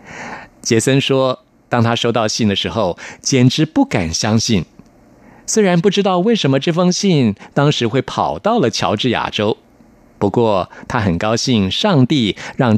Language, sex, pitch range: Chinese, male, 105-145 Hz